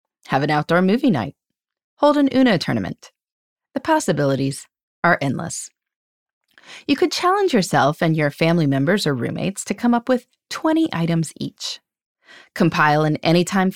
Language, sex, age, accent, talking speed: English, female, 30-49, American, 145 wpm